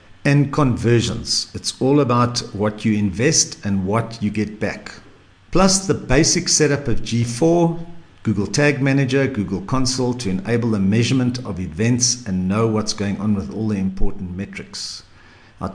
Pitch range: 100-125 Hz